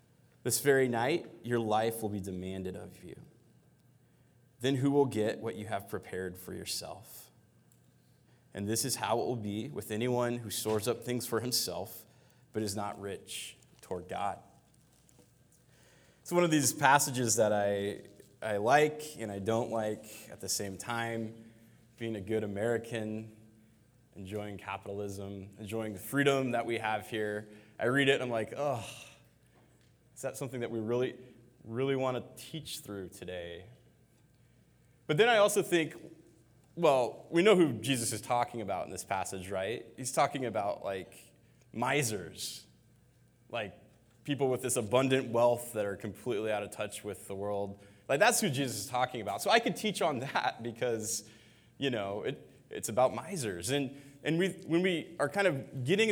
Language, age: English, 20-39